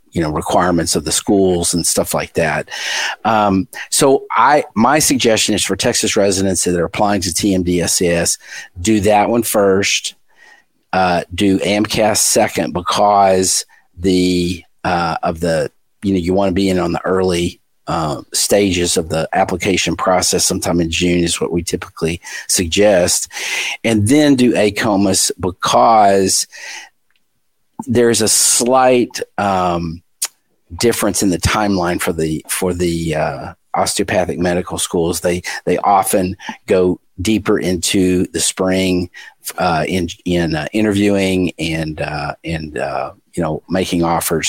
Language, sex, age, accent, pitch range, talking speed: English, male, 50-69, American, 85-100 Hz, 140 wpm